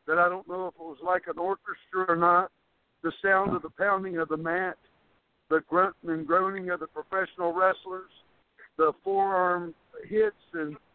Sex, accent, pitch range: male, American, 160-185 Hz